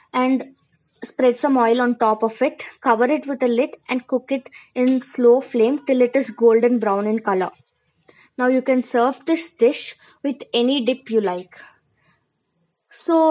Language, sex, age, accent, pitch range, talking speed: English, female, 20-39, Indian, 230-280 Hz, 170 wpm